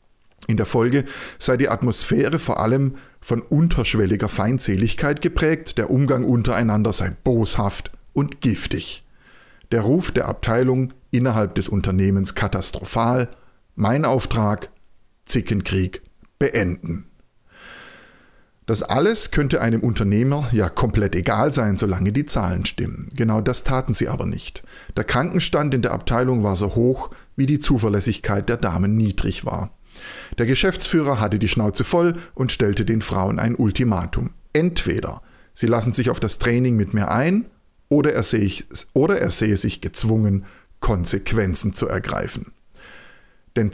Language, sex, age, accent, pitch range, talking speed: German, male, 50-69, German, 105-130 Hz, 135 wpm